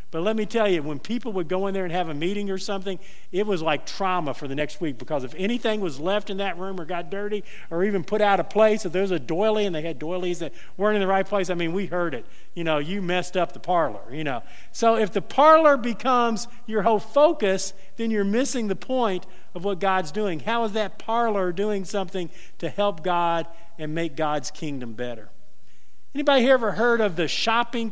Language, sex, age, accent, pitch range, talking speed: English, male, 50-69, American, 175-230 Hz, 235 wpm